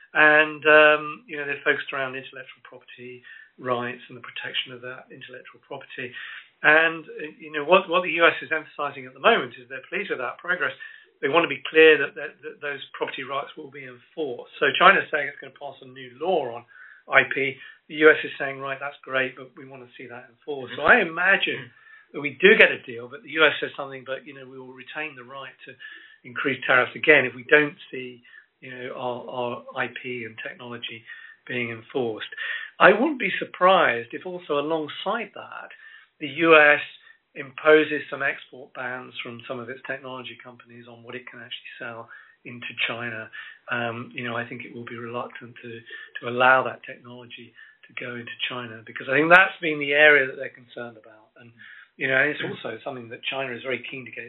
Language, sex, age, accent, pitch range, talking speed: English, male, 50-69, British, 125-155 Hz, 205 wpm